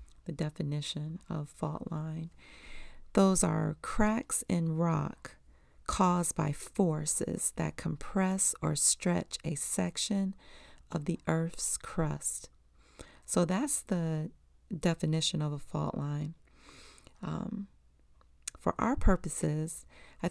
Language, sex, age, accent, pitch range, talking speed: English, female, 40-59, American, 145-175 Hz, 105 wpm